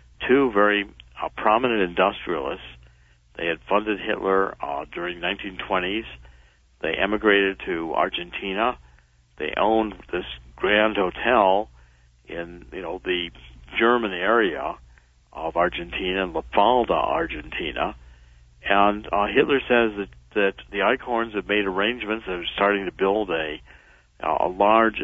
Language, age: English, 60-79